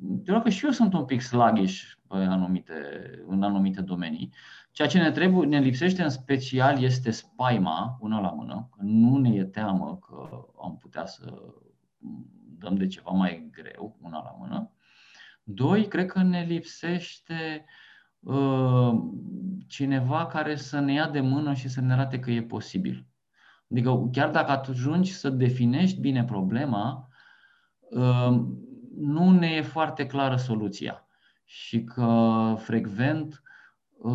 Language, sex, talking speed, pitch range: Romanian, male, 140 wpm, 110-150 Hz